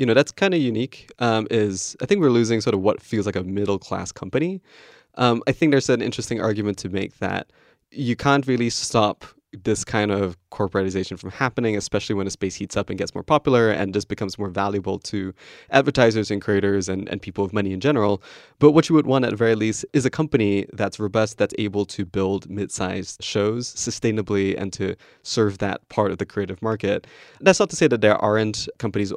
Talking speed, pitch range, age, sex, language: 215 wpm, 100-120 Hz, 20-39, male, English